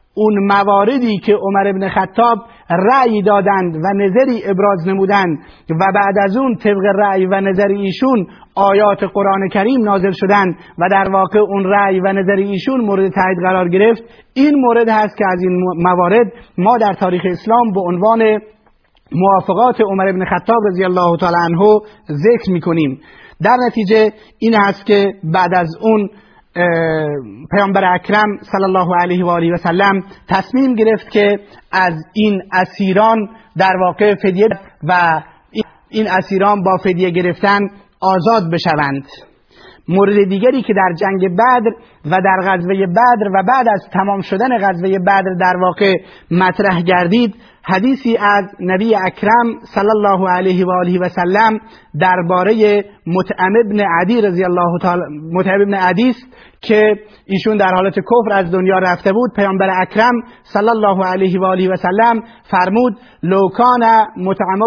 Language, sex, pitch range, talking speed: Persian, male, 185-220 Hz, 145 wpm